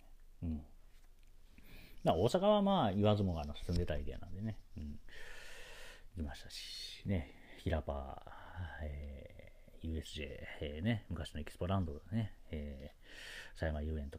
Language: Japanese